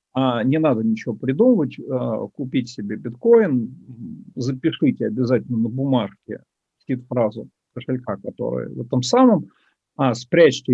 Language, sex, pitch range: Russian, male, 125-170 Hz